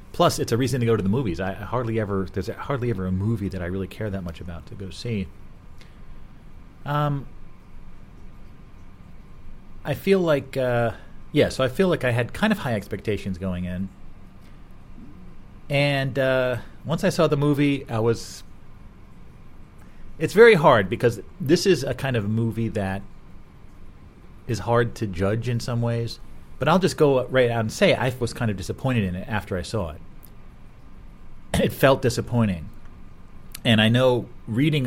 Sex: male